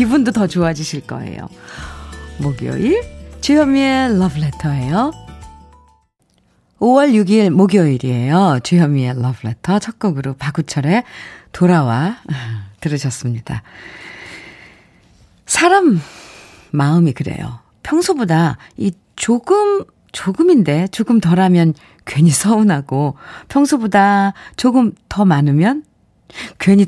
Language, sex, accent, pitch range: Korean, female, native, 145-230 Hz